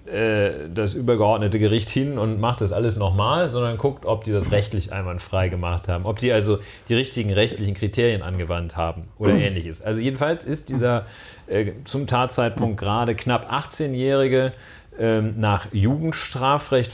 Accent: German